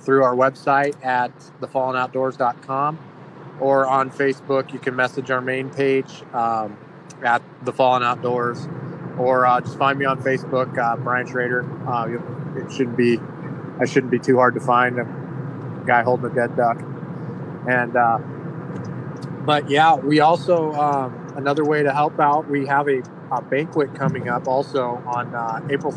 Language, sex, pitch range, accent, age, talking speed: English, male, 125-150 Hz, American, 30-49, 160 wpm